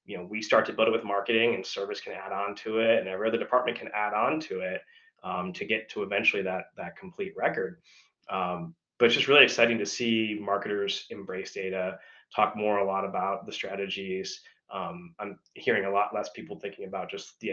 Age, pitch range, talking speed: 20-39, 95-115 Hz, 215 wpm